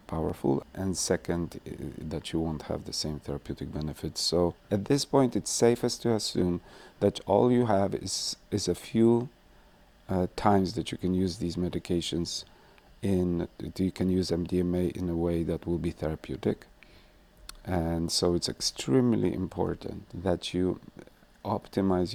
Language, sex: English, male